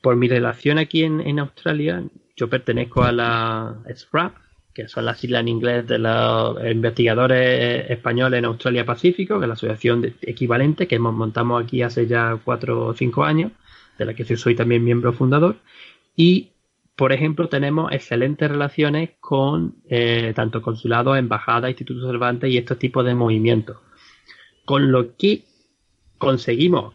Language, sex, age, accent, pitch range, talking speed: Spanish, male, 20-39, Spanish, 120-160 Hz, 160 wpm